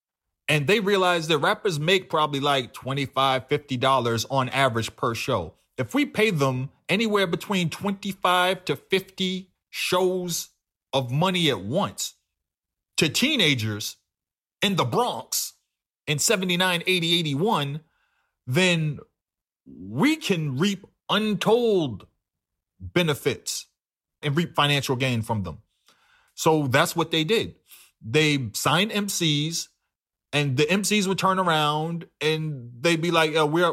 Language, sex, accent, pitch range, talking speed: English, male, American, 135-180 Hz, 125 wpm